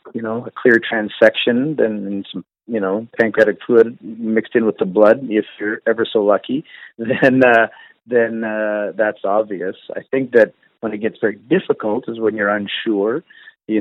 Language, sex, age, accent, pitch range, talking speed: English, male, 40-59, American, 105-115 Hz, 180 wpm